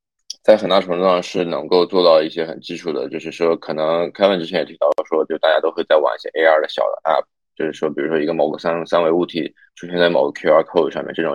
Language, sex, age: Chinese, male, 20-39